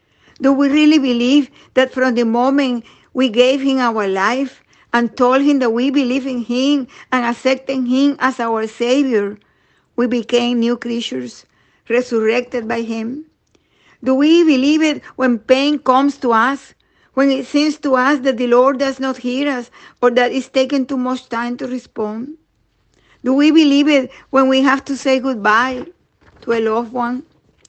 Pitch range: 230-275 Hz